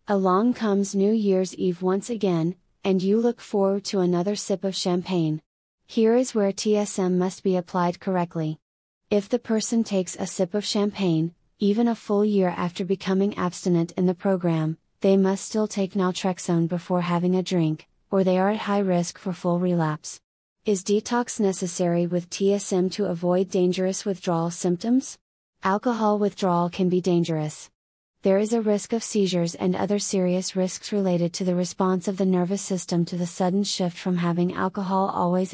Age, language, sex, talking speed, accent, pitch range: 30-49, English, female, 170 wpm, American, 180-200 Hz